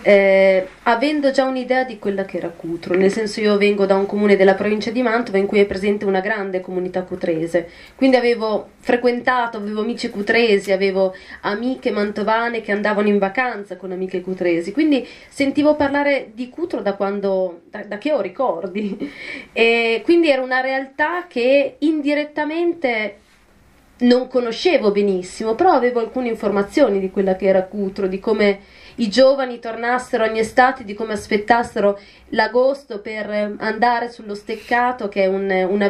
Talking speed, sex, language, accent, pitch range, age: 155 wpm, female, Italian, native, 195-245 Hz, 30-49